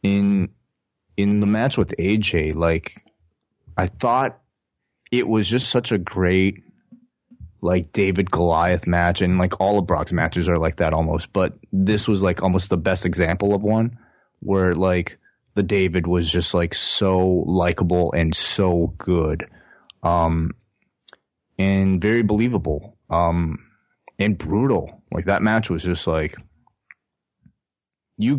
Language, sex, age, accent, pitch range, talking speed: English, male, 20-39, American, 85-105 Hz, 135 wpm